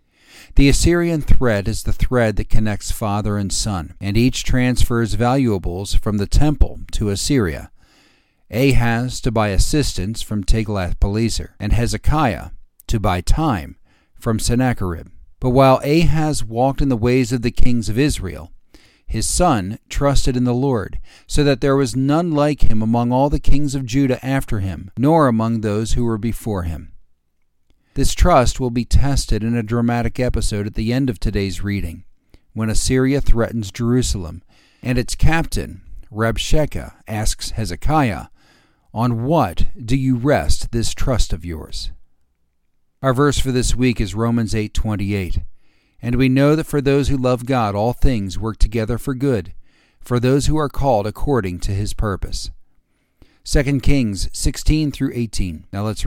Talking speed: 160 wpm